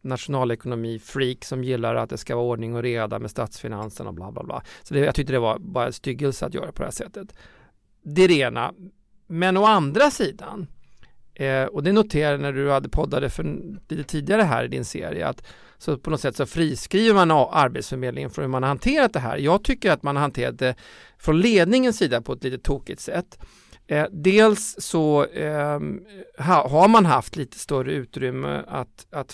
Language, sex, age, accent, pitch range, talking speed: Swedish, male, 40-59, native, 130-170 Hz, 195 wpm